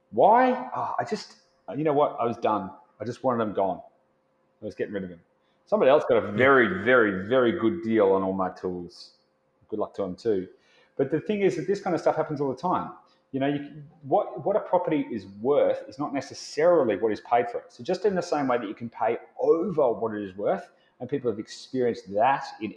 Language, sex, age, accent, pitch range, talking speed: English, male, 30-49, Australian, 110-185 Hz, 230 wpm